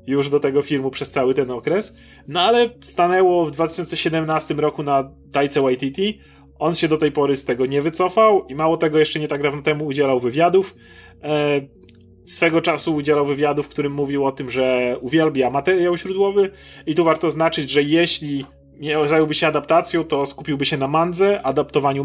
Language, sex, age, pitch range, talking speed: Polish, male, 30-49, 135-170 Hz, 180 wpm